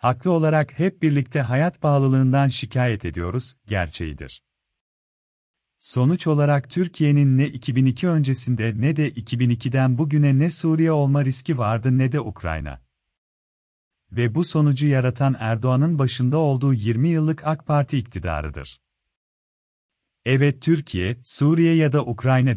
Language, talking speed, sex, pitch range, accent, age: Turkish, 120 wpm, male, 120-150 Hz, native, 40-59